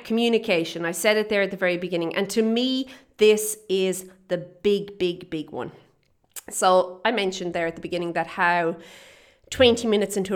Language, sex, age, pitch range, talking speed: English, female, 30-49, 185-245 Hz, 180 wpm